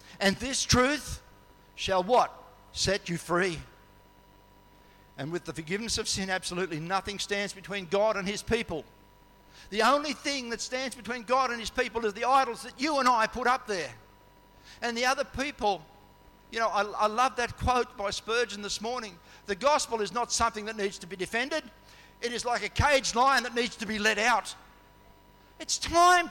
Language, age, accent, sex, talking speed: English, 50-69, Australian, male, 185 wpm